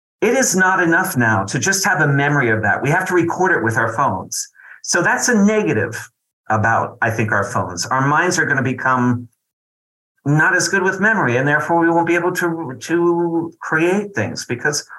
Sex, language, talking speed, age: male, English, 200 wpm, 50-69